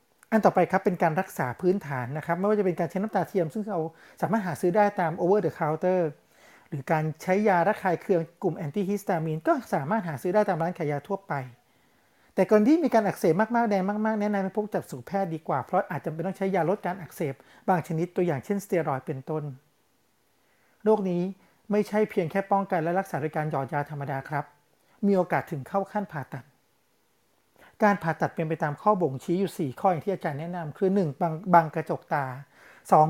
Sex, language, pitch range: male, Thai, 155-200 Hz